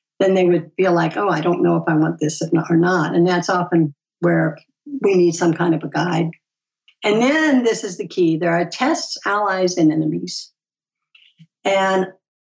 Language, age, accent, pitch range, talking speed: English, 60-79, American, 170-225 Hz, 190 wpm